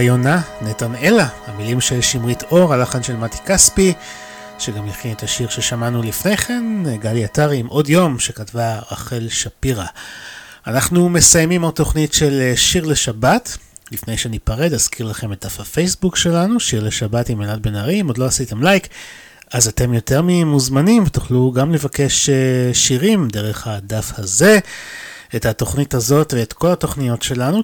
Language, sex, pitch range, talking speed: Hebrew, male, 110-150 Hz, 115 wpm